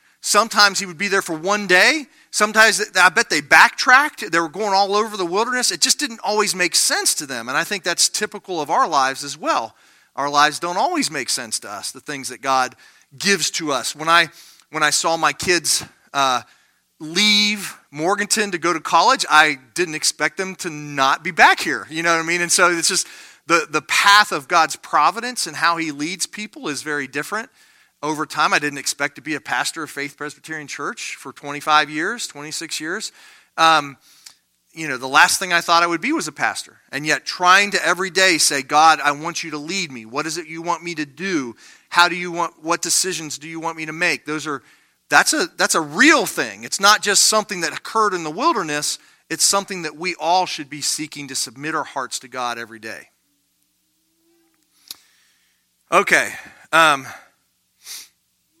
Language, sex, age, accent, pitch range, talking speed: English, male, 40-59, American, 150-200 Hz, 205 wpm